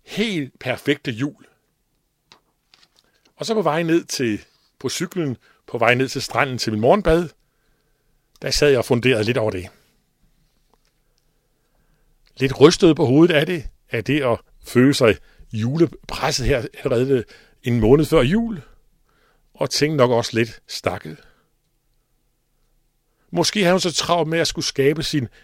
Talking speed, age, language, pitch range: 140 wpm, 60-79, Danish, 125-160 Hz